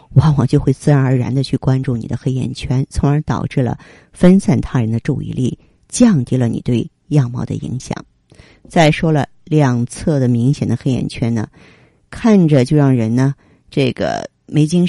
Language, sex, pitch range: Chinese, female, 125-155 Hz